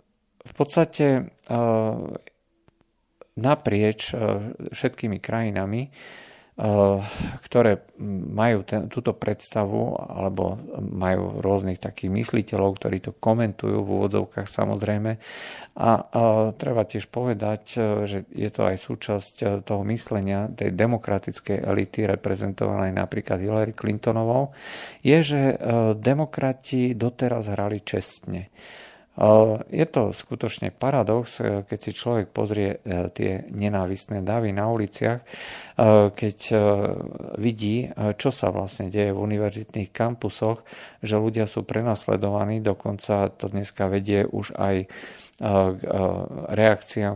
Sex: male